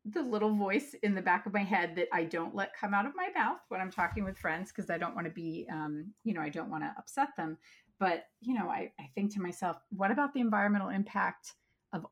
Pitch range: 165-225 Hz